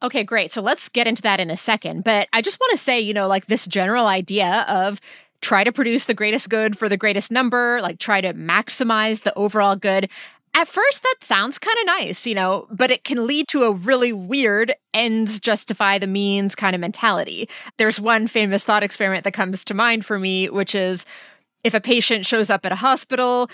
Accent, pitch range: American, 195-250 Hz